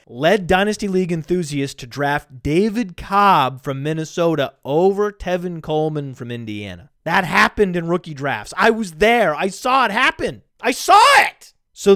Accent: American